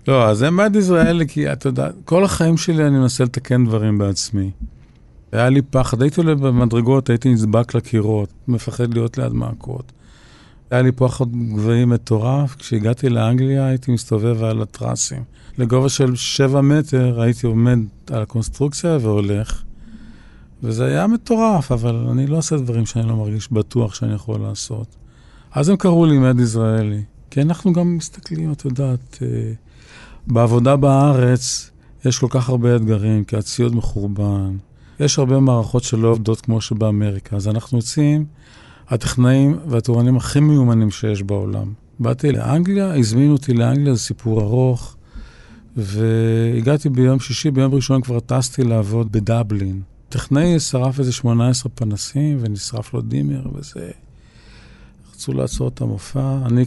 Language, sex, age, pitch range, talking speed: Hebrew, male, 50-69, 110-135 Hz, 140 wpm